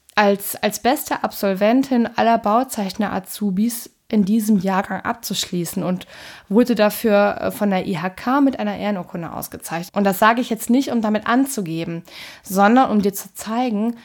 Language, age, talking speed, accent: German, 20-39, 145 wpm, German